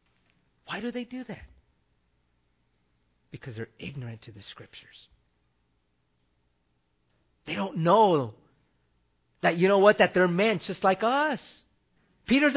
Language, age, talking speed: English, 40-59, 120 wpm